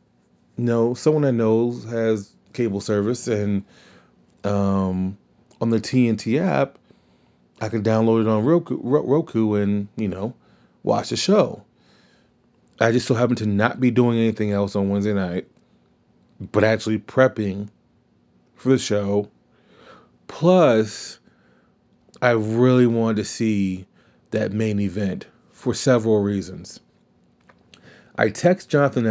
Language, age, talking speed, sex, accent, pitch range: English, 30-49, 125 wpm, male, American, 100-115 Hz